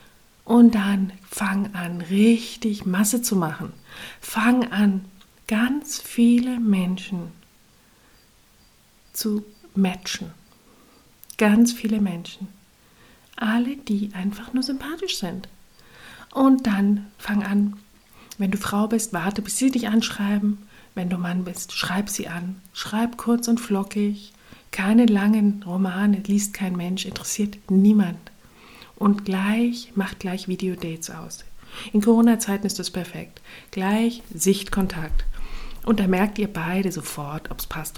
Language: German